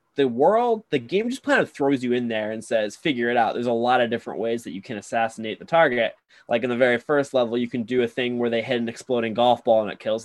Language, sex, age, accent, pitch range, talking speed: English, male, 10-29, American, 110-130 Hz, 285 wpm